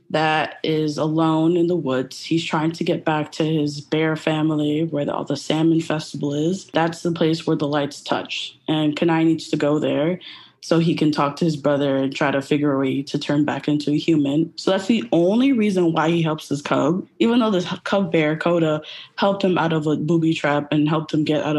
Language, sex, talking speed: English, female, 230 wpm